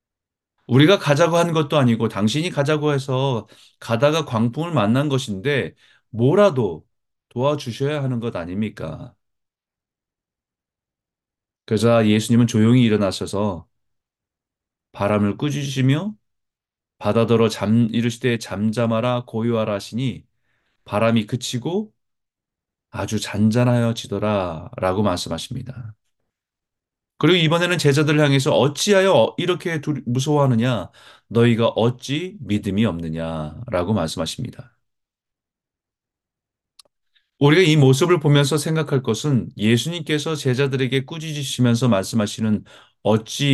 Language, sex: Korean, male